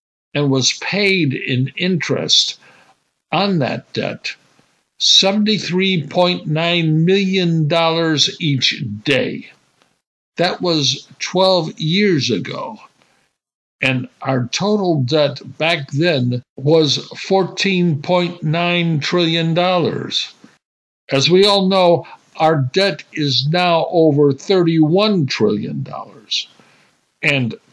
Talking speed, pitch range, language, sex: 80 wpm, 140-175 Hz, English, male